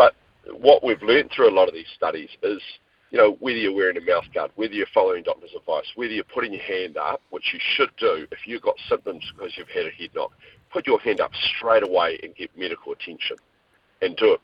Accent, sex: Australian, male